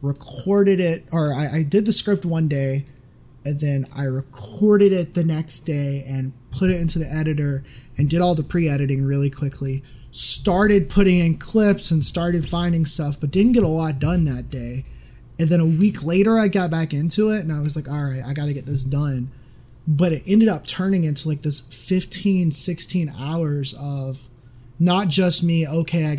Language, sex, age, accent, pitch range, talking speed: English, male, 20-39, American, 135-170 Hz, 195 wpm